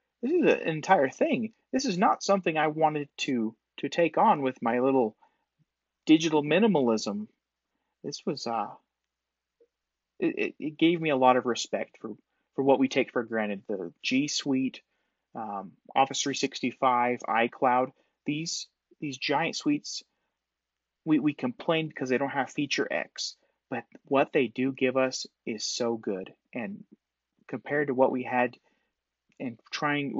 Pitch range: 125-170 Hz